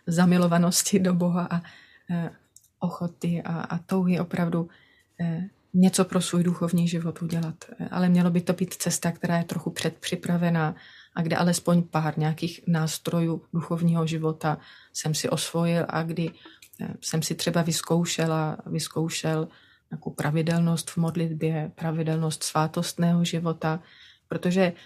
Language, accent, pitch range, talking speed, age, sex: Czech, native, 165-185 Hz, 120 wpm, 30-49, female